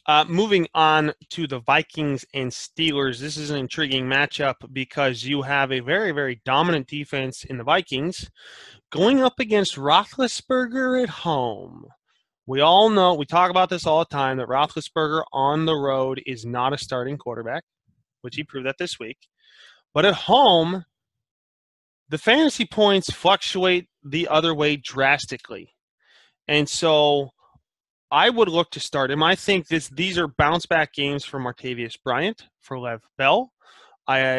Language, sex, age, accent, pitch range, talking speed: English, male, 20-39, American, 135-170 Hz, 155 wpm